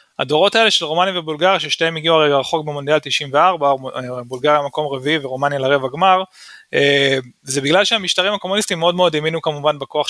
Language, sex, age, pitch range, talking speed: Hebrew, male, 20-39, 130-165 Hz, 155 wpm